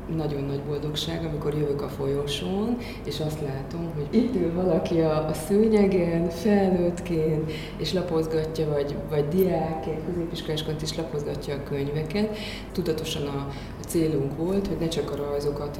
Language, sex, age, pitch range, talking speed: Hungarian, female, 30-49, 145-165 Hz, 135 wpm